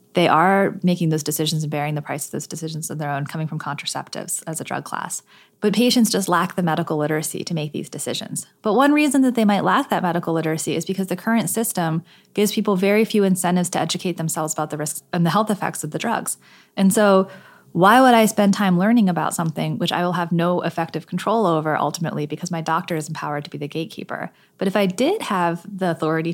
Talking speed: 230 wpm